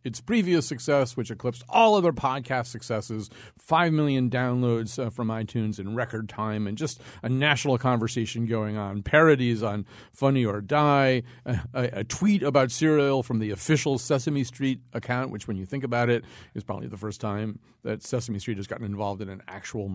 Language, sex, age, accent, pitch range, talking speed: English, male, 40-59, American, 110-140 Hz, 185 wpm